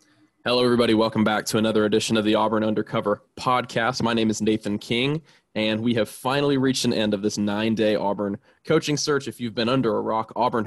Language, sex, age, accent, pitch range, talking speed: English, male, 20-39, American, 105-120 Hz, 210 wpm